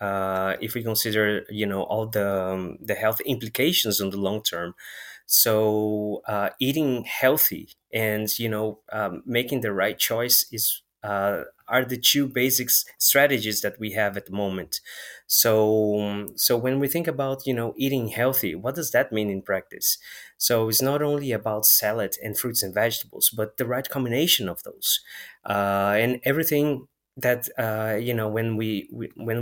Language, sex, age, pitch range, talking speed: English, male, 20-39, 105-130 Hz, 170 wpm